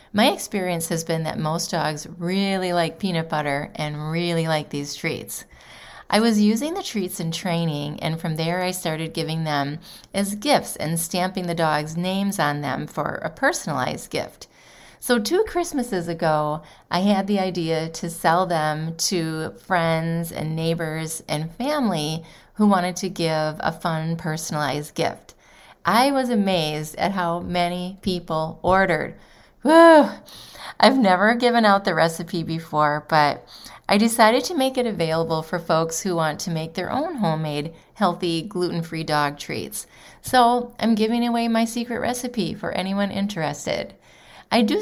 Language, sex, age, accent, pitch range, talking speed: English, female, 30-49, American, 160-200 Hz, 155 wpm